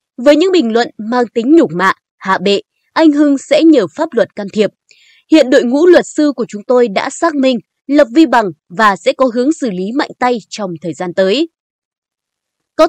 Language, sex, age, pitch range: Vietnamese, female, 20-39, 215-310 Hz